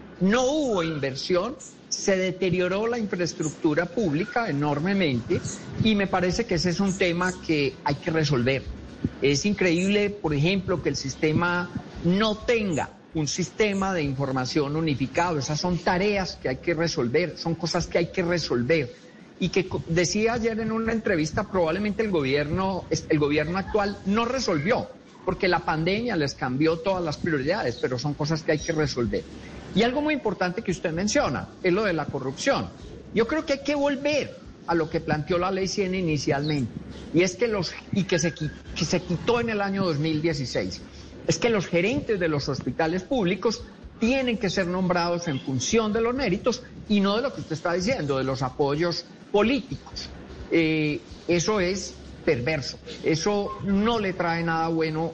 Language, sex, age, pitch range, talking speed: Spanish, male, 50-69, 155-200 Hz, 170 wpm